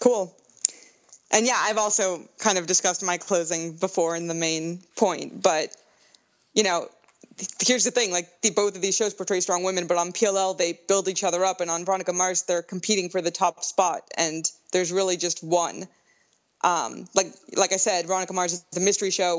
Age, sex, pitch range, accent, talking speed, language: 20-39, female, 175-200 Hz, American, 195 wpm, English